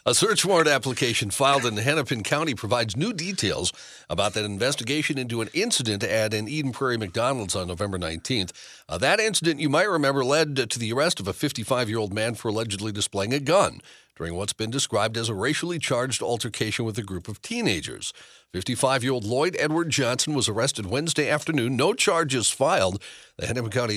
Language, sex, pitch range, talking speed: English, male, 105-140 Hz, 180 wpm